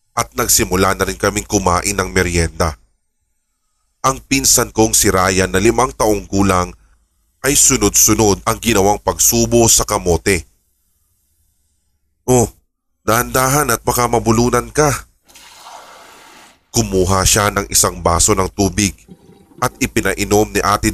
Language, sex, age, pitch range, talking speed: English, male, 20-39, 85-115 Hz, 120 wpm